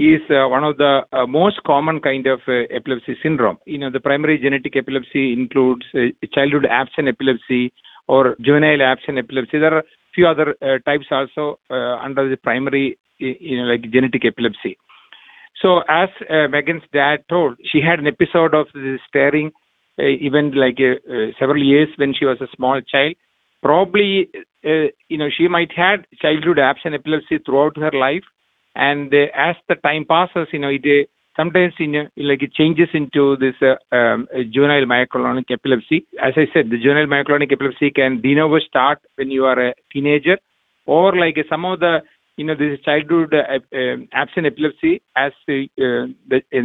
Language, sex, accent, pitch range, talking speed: English, male, Indian, 130-155 Hz, 175 wpm